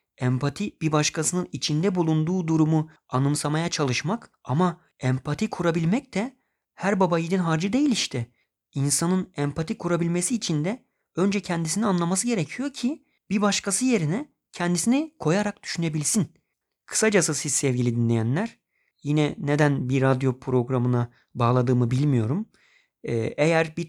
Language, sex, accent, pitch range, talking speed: Turkish, male, native, 145-185 Hz, 115 wpm